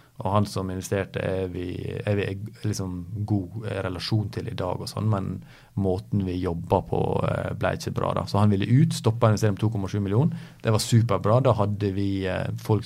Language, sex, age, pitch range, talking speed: English, male, 30-49, 95-120 Hz, 190 wpm